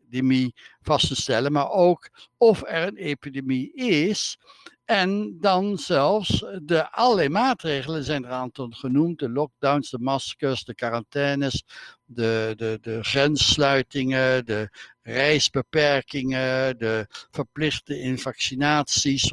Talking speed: 110 wpm